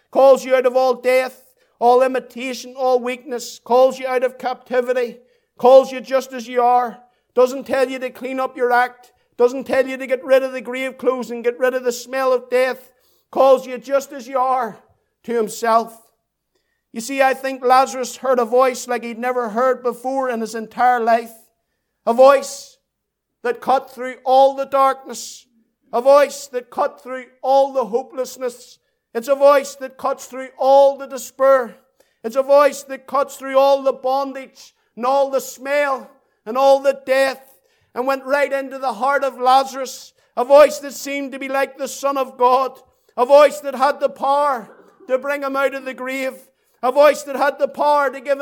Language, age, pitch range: English, 50-69, 250-275 Hz